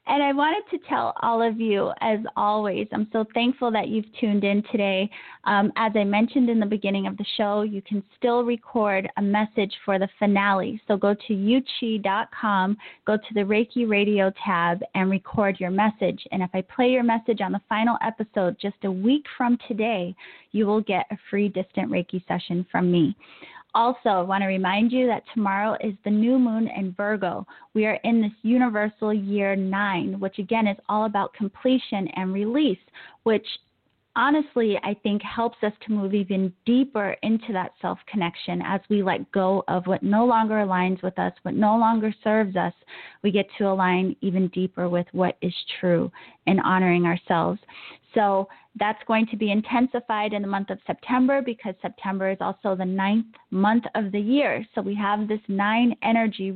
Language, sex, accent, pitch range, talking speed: English, female, American, 195-230 Hz, 185 wpm